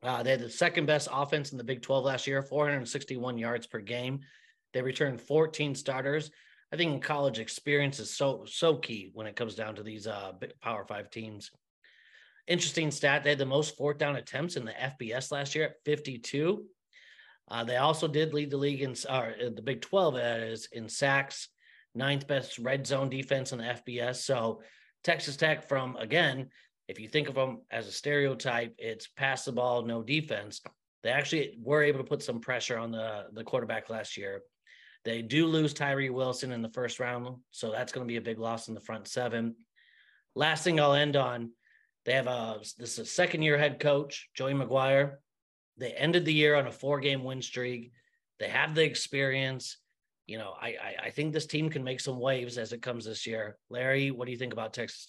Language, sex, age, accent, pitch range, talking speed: English, male, 30-49, American, 120-145 Hz, 200 wpm